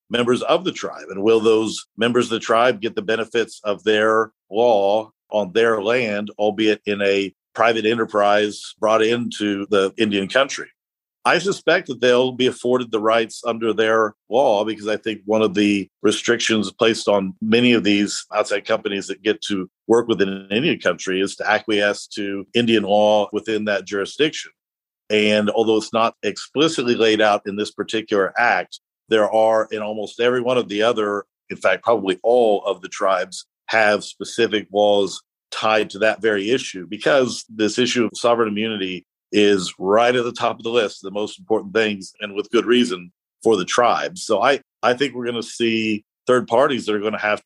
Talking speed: 185 wpm